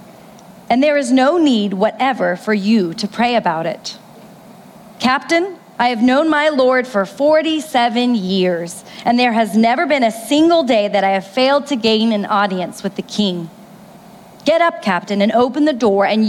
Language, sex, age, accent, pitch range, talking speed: English, female, 40-59, American, 210-270 Hz, 175 wpm